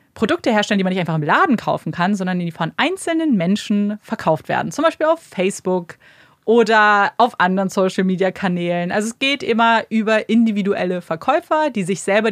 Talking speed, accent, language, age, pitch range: 170 wpm, German, German, 30-49, 175-225 Hz